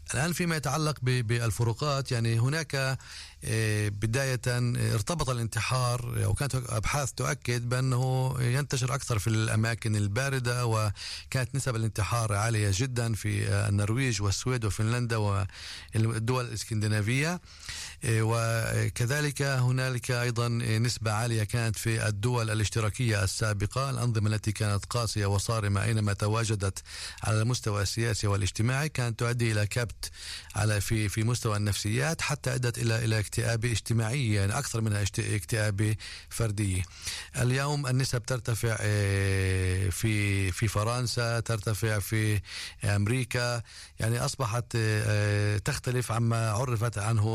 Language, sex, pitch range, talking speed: Hebrew, male, 105-125 Hz, 110 wpm